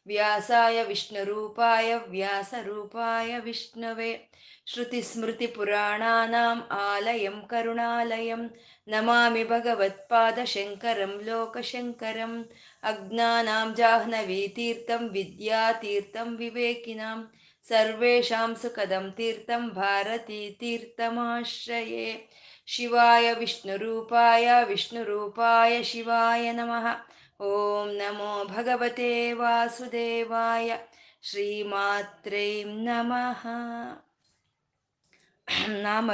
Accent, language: native, Kannada